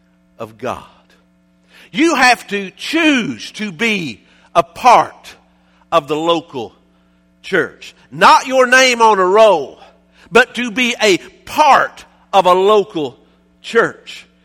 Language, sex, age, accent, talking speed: English, male, 50-69, American, 115 wpm